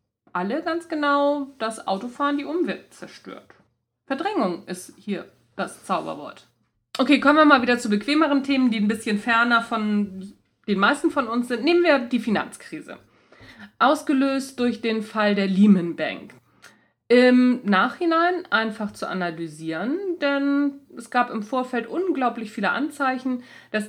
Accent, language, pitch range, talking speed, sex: German, German, 205-275 Hz, 140 wpm, female